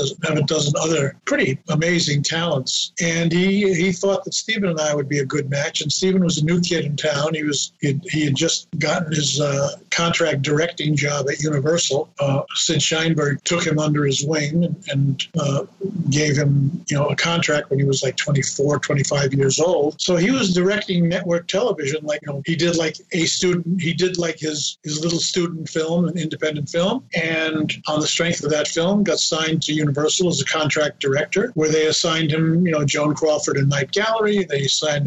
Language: English